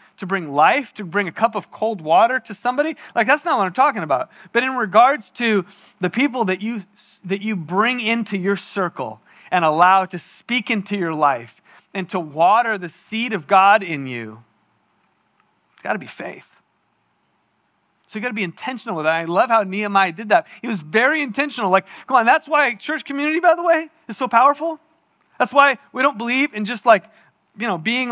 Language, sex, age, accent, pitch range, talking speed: English, male, 30-49, American, 190-260 Hz, 200 wpm